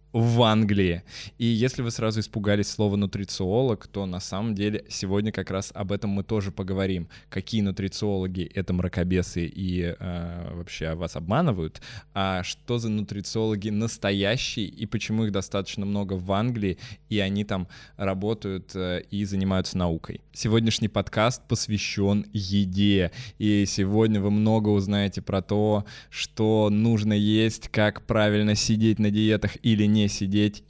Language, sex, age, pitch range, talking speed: Russian, male, 20-39, 100-110 Hz, 140 wpm